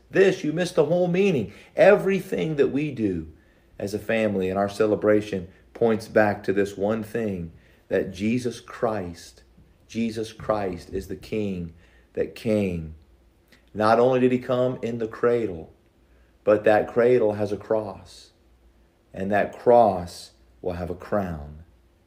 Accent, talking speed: American, 145 wpm